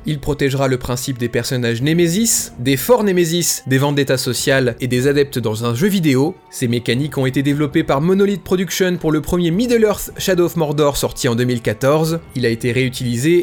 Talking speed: 190 wpm